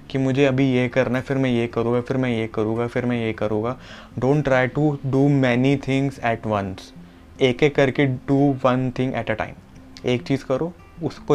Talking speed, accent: 205 wpm, native